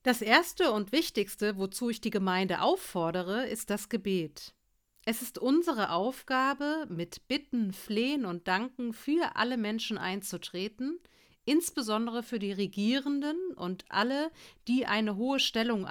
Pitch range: 190-255 Hz